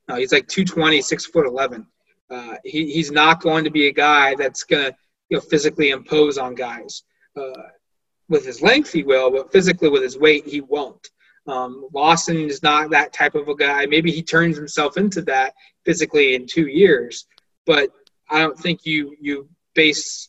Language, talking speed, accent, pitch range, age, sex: English, 185 wpm, American, 145-185 Hz, 30-49, male